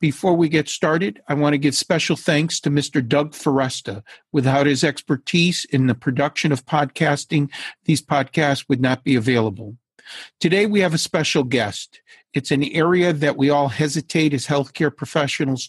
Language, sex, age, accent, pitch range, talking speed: English, male, 50-69, American, 135-160 Hz, 170 wpm